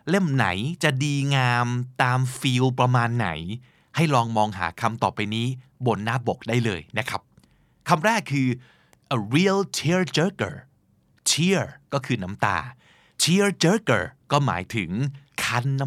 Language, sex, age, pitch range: Thai, male, 20-39, 115-145 Hz